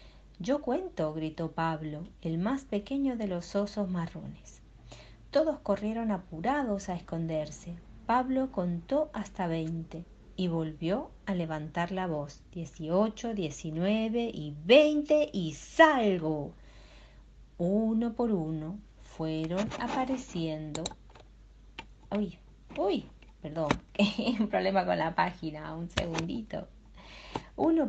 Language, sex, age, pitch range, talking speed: Spanish, female, 40-59, 165-235 Hz, 105 wpm